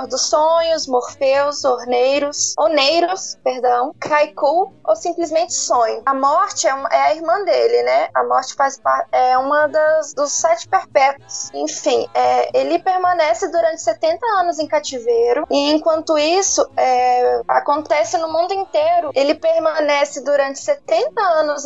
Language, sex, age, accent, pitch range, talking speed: Portuguese, female, 20-39, Brazilian, 275-350 Hz, 140 wpm